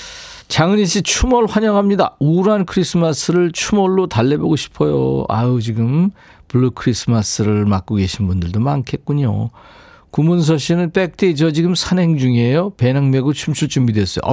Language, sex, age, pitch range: Korean, male, 50-69, 110-165 Hz